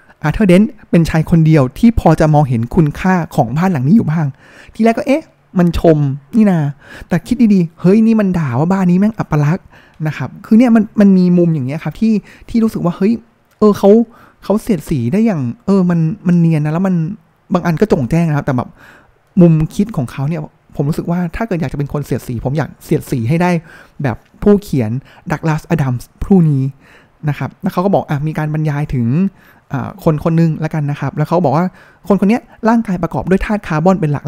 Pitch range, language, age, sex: 150-195 Hz, Thai, 20-39, male